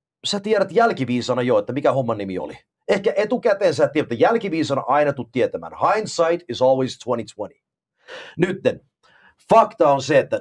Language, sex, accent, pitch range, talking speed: Finnish, male, native, 140-230 Hz, 155 wpm